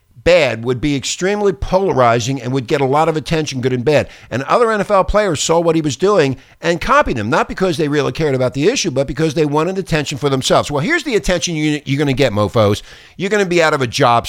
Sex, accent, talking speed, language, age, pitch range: male, American, 240 wpm, English, 50-69, 130-190 Hz